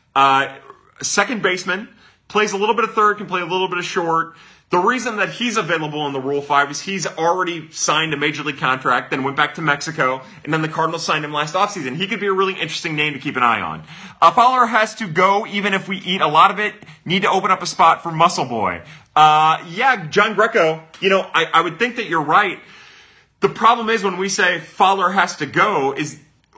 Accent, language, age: American, English, 30-49